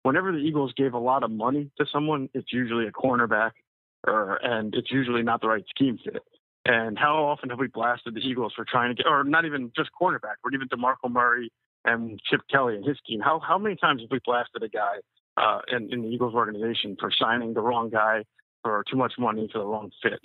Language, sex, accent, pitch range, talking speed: English, male, American, 115-145 Hz, 230 wpm